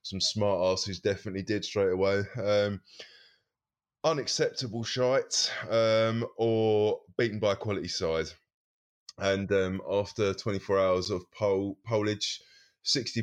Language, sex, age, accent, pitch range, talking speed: English, male, 20-39, British, 90-100 Hz, 125 wpm